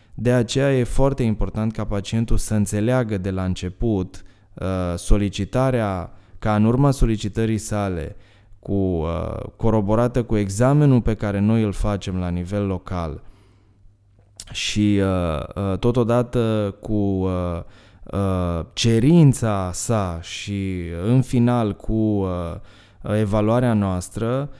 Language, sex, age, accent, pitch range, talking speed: Romanian, male, 20-39, native, 95-110 Hz, 100 wpm